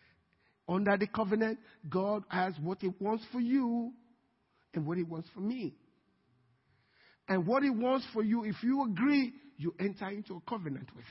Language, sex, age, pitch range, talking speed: English, male, 50-69, 190-255 Hz, 165 wpm